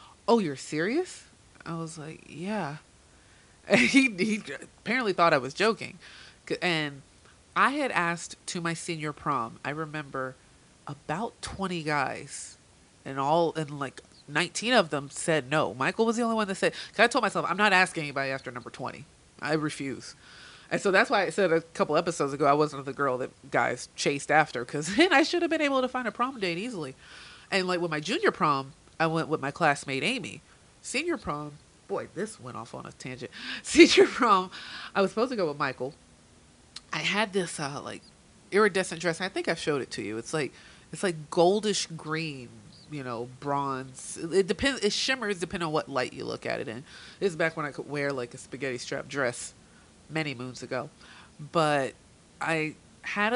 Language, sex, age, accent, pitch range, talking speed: English, female, 30-49, American, 140-200 Hz, 195 wpm